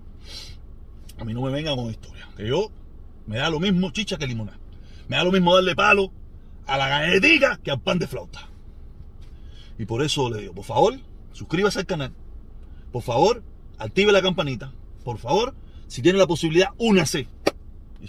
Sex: male